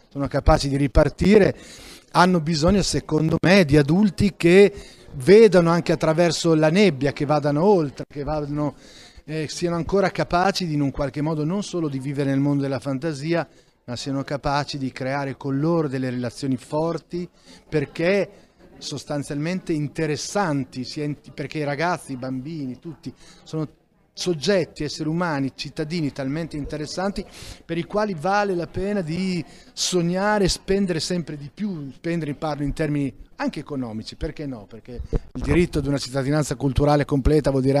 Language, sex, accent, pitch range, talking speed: Italian, male, native, 140-170 Hz, 150 wpm